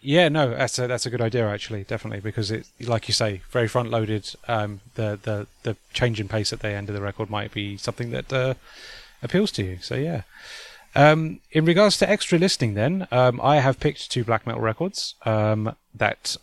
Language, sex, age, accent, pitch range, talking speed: English, male, 30-49, British, 105-125 Hz, 210 wpm